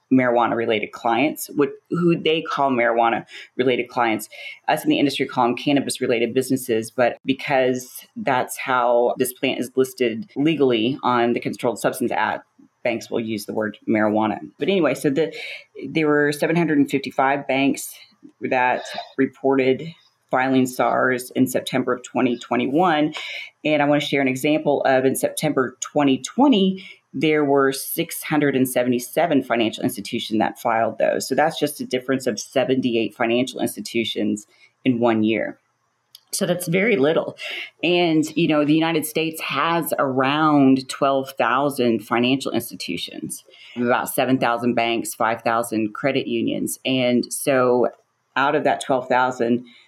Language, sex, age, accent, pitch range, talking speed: English, female, 30-49, American, 120-145 Hz, 130 wpm